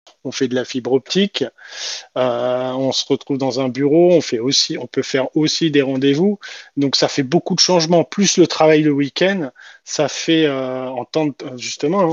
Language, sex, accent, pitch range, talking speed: French, male, French, 130-160 Hz, 200 wpm